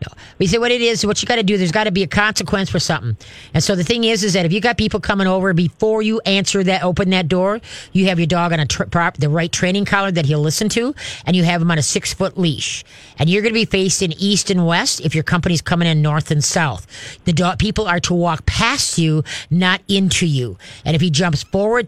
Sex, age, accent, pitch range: female, 40-59, American, 155-195 Hz